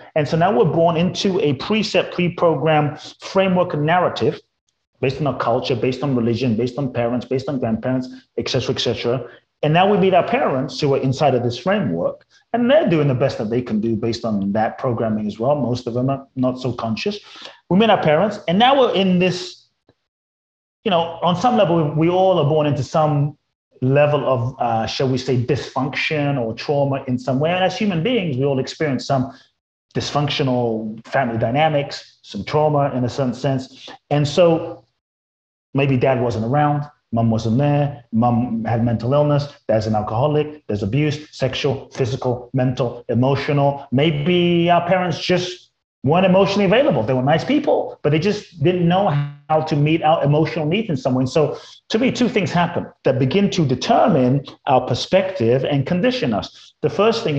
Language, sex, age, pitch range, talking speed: English, male, 30-49, 125-170 Hz, 185 wpm